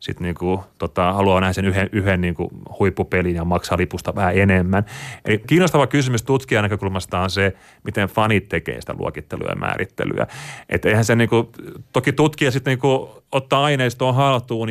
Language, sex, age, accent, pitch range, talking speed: Finnish, male, 30-49, native, 95-125 Hz, 170 wpm